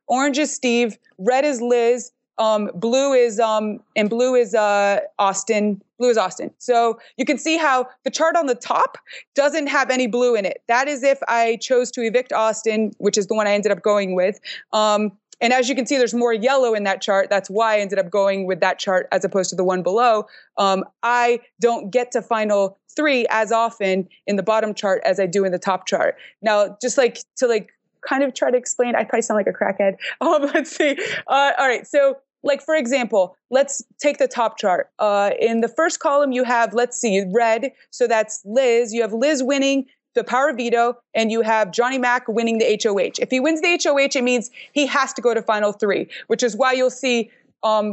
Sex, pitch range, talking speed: female, 215-265 Hz, 220 wpm